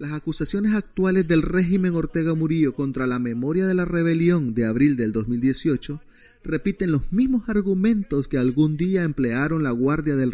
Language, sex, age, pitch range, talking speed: Spanish, male, 30-49, 120-165 Hz, 165 wpm